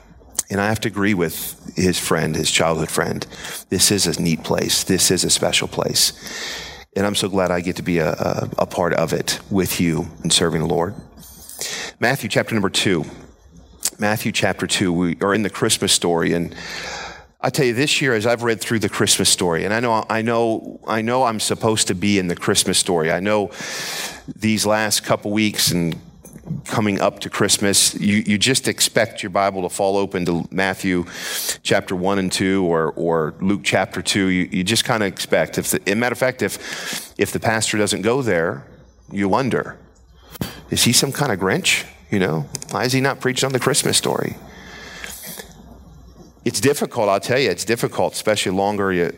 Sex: male